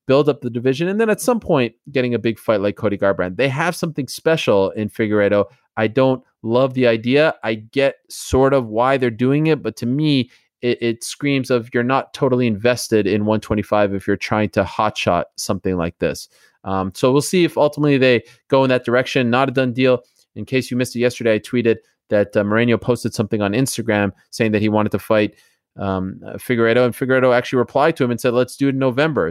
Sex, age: male, 30-49